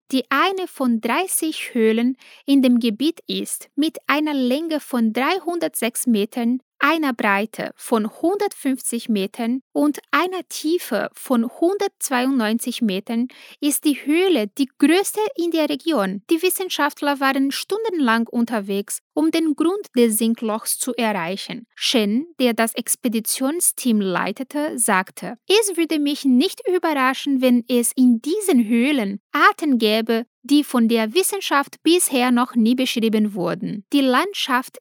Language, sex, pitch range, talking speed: Portuguese, female, 230-315 Hz, 130 wpm